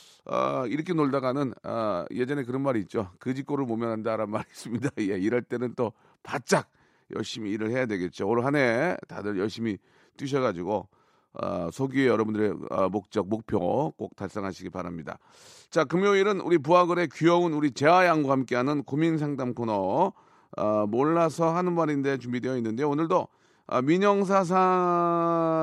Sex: male